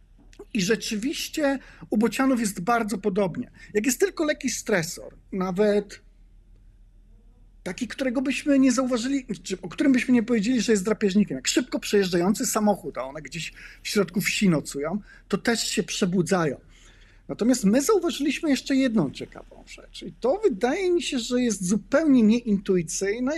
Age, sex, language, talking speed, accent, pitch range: 50-69, male, Polish, 150 wpm, native, 190-255 Hz